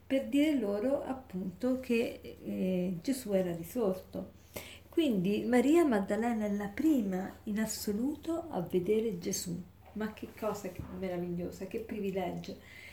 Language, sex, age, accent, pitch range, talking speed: Italian, female, 40-59, native, 185-215 Hz, 120 wpm